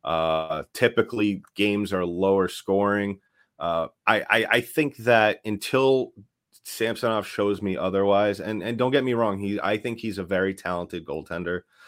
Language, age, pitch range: English, 30-49, 90-110 Hz